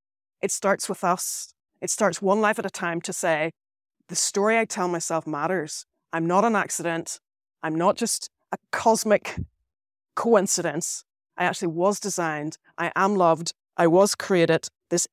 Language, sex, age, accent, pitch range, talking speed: English, female, 30-49, British, 180-225 Hz, 160 wpm